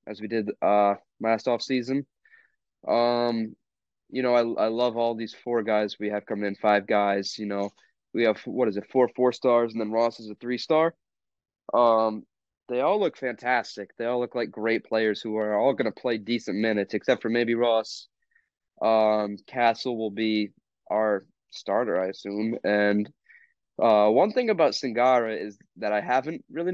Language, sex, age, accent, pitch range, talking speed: English, male, 20-39, American, 105-125 Hz, 180 wpm